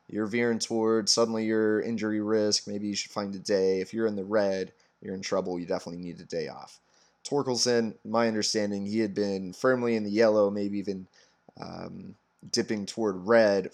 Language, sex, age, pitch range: English, male, 20-39, 100-130 Hz